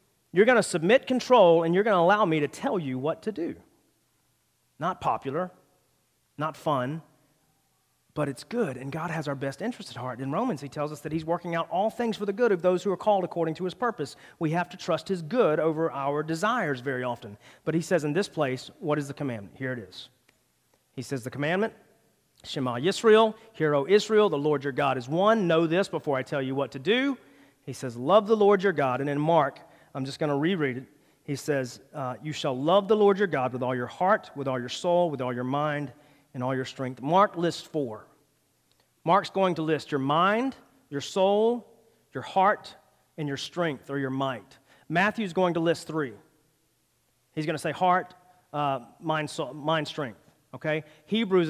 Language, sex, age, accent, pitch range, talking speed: English, male, 40-59, American, 140-185 Hz, 210 wpm